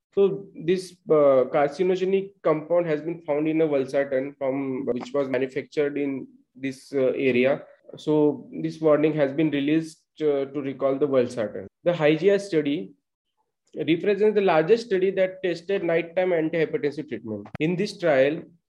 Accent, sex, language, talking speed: Indian, male, English, 145 wpm